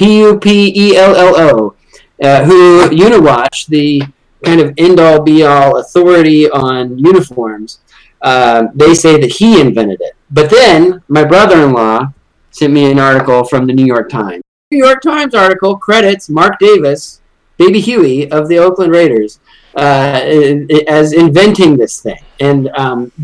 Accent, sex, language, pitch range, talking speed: American, male, English, 145-200 Hz, 130 wpm